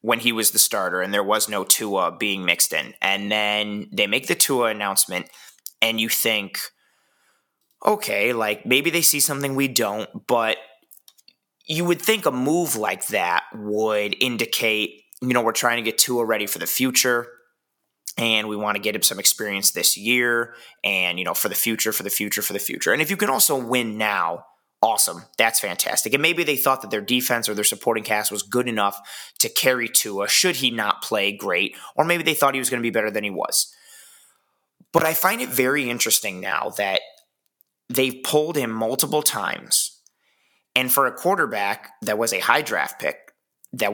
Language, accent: English, American